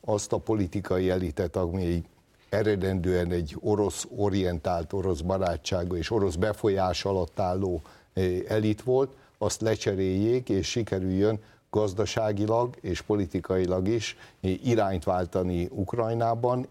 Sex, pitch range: male, 90-105 Hz